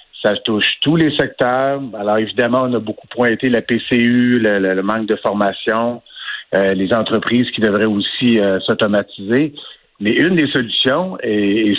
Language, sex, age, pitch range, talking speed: French, male, 50-69, 105-135 Hz, 170 wpm